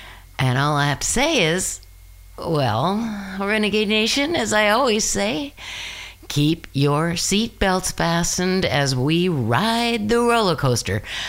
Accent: American